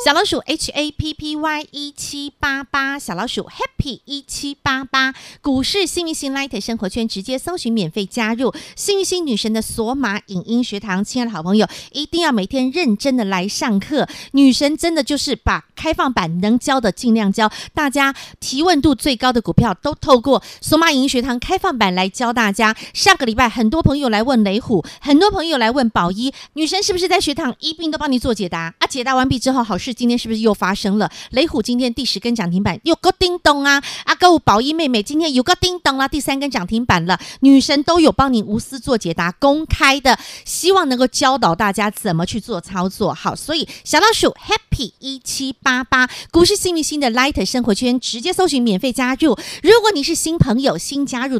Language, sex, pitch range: Chinese, female, 220-300 Hz